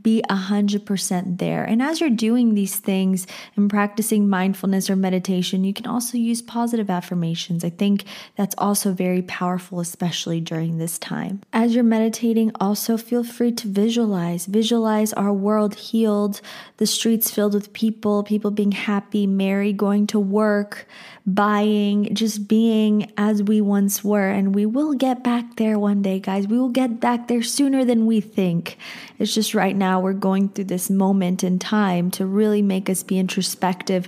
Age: 20-39